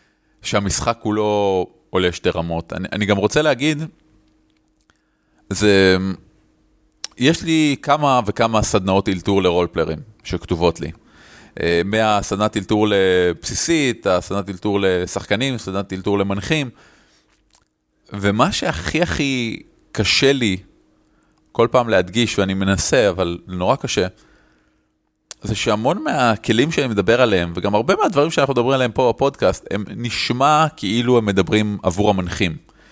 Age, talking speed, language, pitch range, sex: 30-49, 115 wpm, Hebrew, 95-130 Hz, male